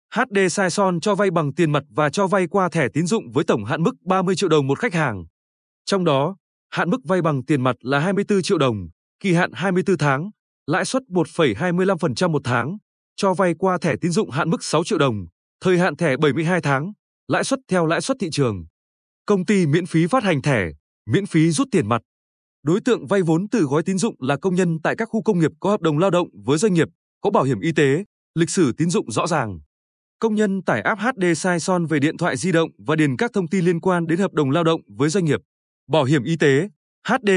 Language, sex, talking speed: Vietnamese, male, 235 wpm